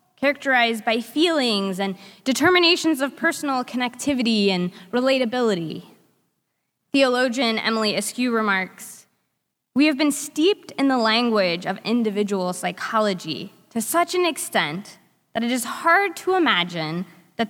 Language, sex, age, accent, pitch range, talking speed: English, female, 20-39, American, 205-270 Hz, 120 wpm